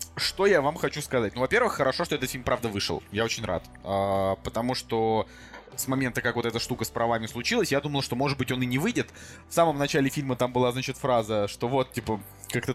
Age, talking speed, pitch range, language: 20-39, 230 wpm, 115-135 Hz, Russian